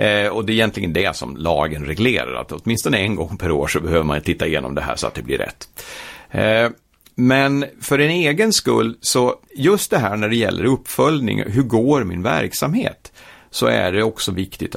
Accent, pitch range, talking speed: native, 110-140 Hz, 195 wpm